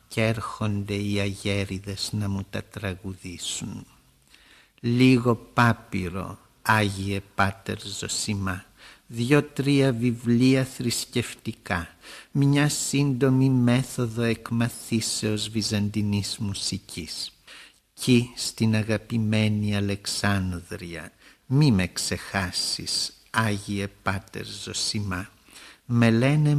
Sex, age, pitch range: male, 60-79, 100-120 Hz